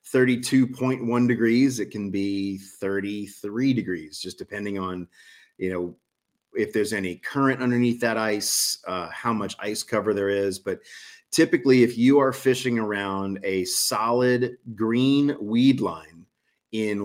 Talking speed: 135 wpm